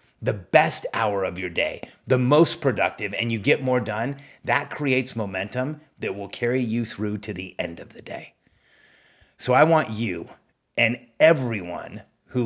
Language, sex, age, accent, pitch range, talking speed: English, male, 30-49, American, 105-125 Hz, 170 wpm